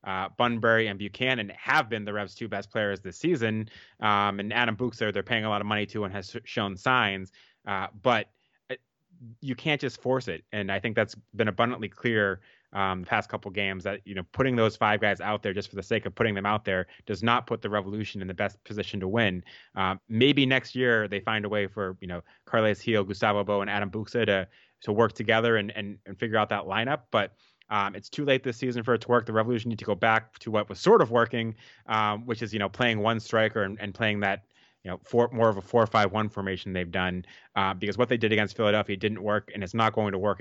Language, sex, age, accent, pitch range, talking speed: English, male, 20-39, American, 100-115 Hz, 255 wpm